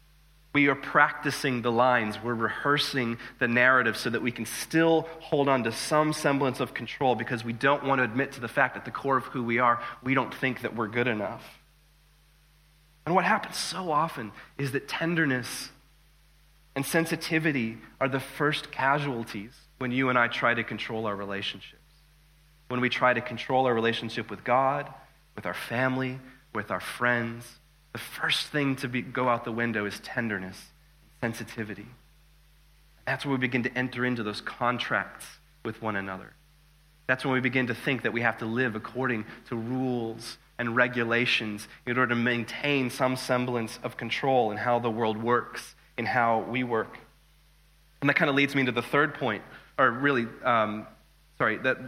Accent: American